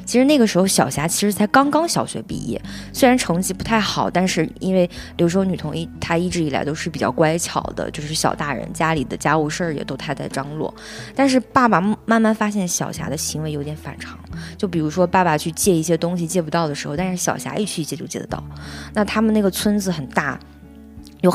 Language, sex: Chinese, female